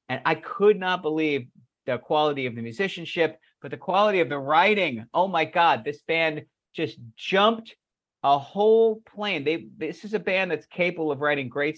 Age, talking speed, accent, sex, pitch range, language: 50-69, 185 wpm, American, male, 130-175 Hz, English